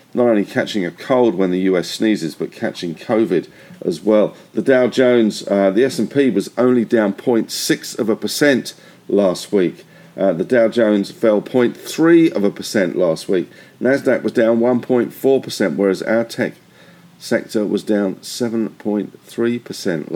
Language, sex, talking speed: English, male, 150 wpm